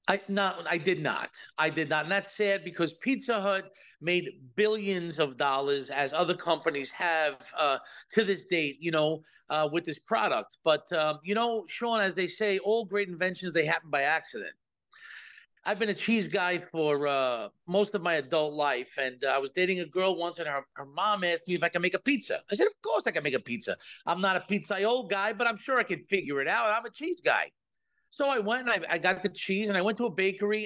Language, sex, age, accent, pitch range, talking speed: English, male, 50-69, American, 170-225 Hz, 235 wpm